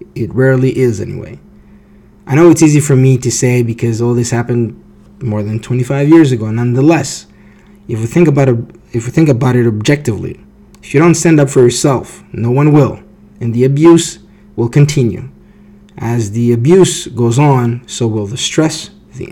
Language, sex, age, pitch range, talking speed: English, male, 20-39, 115-140 Hz, 180 wpm